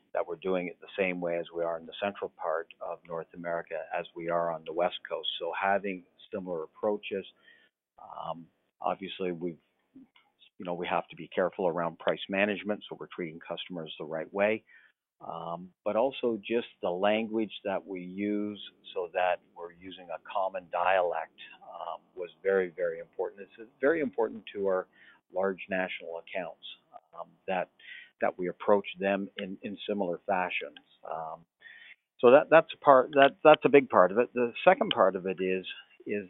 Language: English